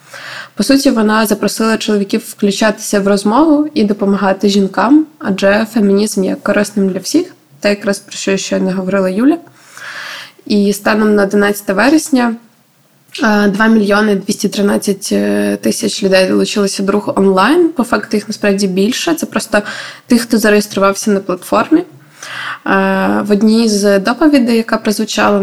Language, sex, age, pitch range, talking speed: Ukrainian, female, 20-39, 195-225 Hz, 135 wpm